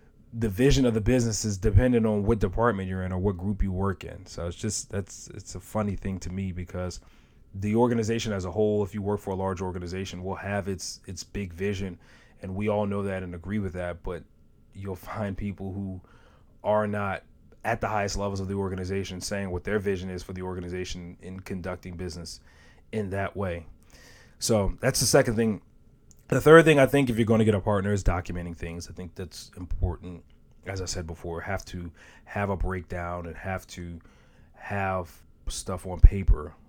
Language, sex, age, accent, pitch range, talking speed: English, male, 30-49, American, 90-105 Hz, 205 wpm